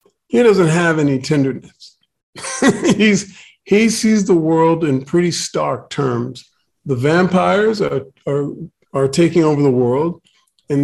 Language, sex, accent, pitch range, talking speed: English, male, American, 140-175 Hz, 135 wpm